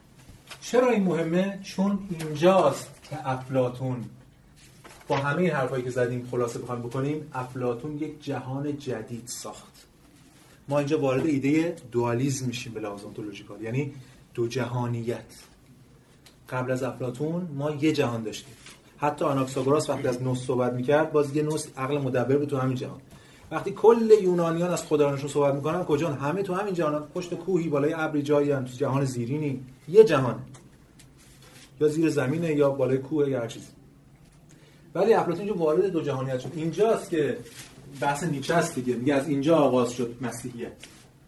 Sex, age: male, 30-49